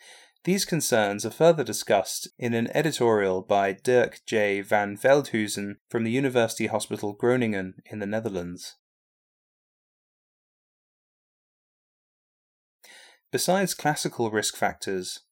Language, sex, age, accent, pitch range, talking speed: English, male, 20-39, British, 105-130 Hz, 100 wpm